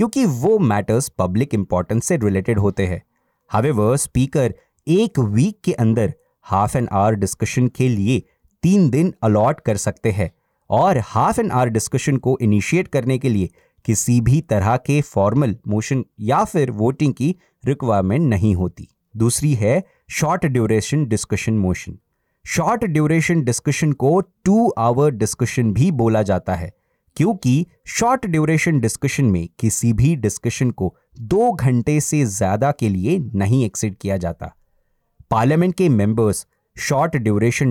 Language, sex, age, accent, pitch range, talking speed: Hindi, male, 30-49, native, 105-145 Hz, 145 wpm